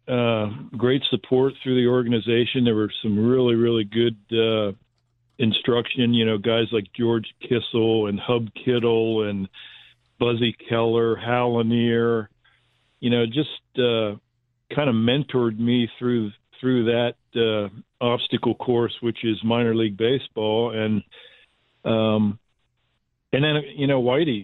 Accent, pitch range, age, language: American, 110-120 Hz, 50-69, English